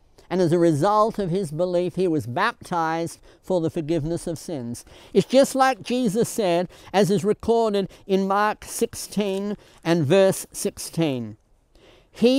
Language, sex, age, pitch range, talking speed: English, male, 60-79, 145-210 Hz, 145 wpm